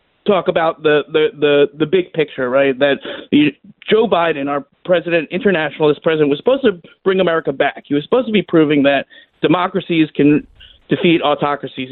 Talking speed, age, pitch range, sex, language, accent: 170 wpm, 40-59, 150-200 Hz, male, English, American